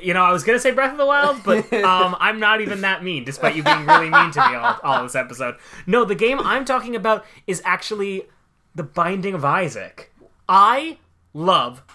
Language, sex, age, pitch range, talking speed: English, male, 20-39, 135-195 Hz, 215 wpm